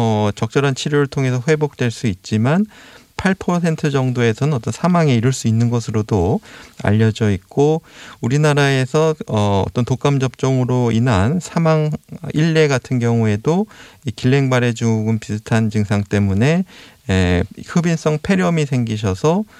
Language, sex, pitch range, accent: Korean, male, 110-145 Hz, native